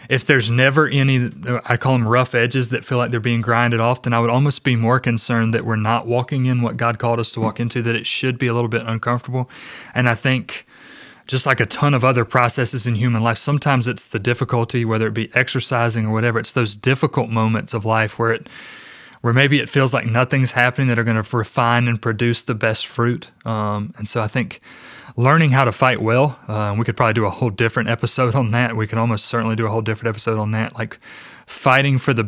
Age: 30-49